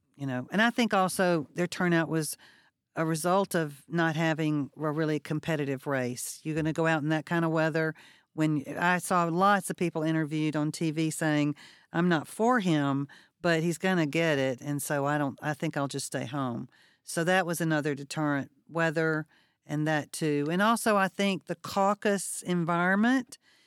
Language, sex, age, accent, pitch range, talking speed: English, female, 50-69, American, 155-185 Hz, 190 wpm